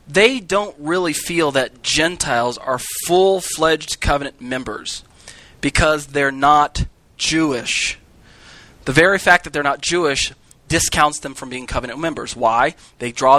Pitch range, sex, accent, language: 130-165 Hz, male, American, English